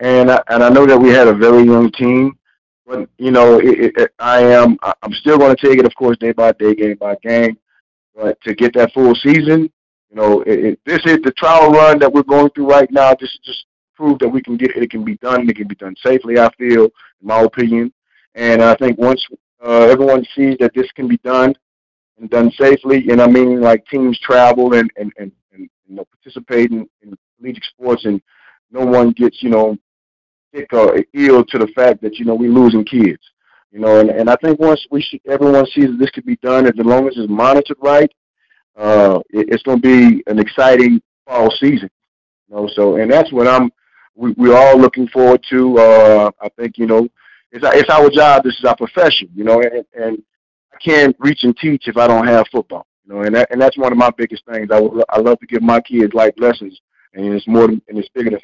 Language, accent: English, American